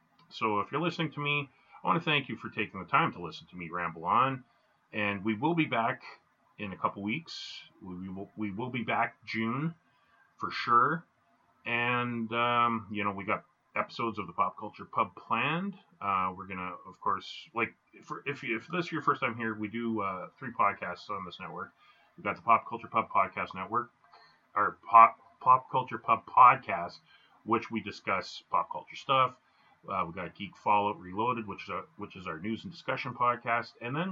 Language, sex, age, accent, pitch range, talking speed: English, male, 30-49, American, 100-135 Hz, 200 wpm